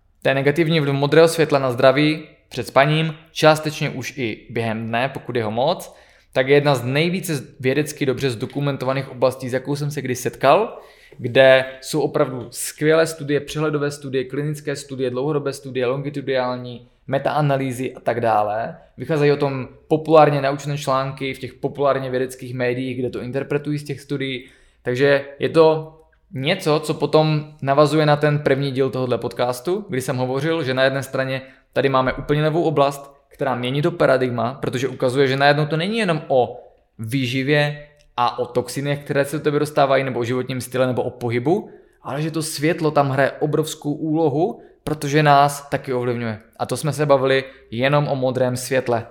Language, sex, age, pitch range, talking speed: Czech, male, 20-39, 130-150 Hz, 170 wpm